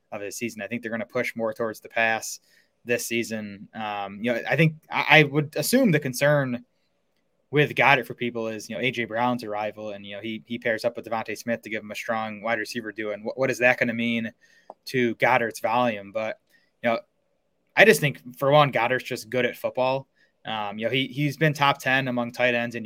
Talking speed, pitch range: 235 wpm, 115-130 Hz